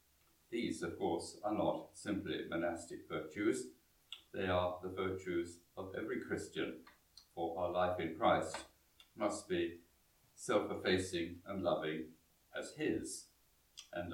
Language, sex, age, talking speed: English, male, 60-79, 120 wpm